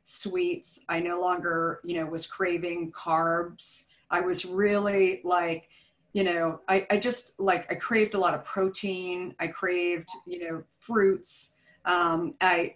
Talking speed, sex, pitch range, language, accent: 150 wpm, female, 170-195 Hz, English, American